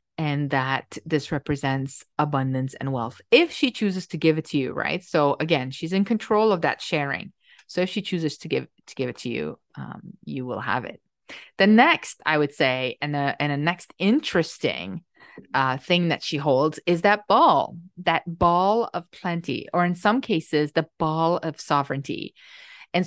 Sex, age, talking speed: female, 30-49, 185 wpm